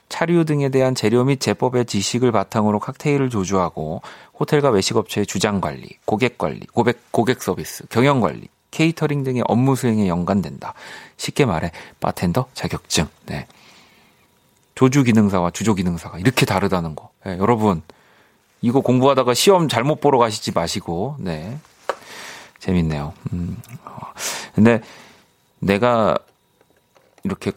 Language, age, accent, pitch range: Korean, 40-59, native, 95-130 Hz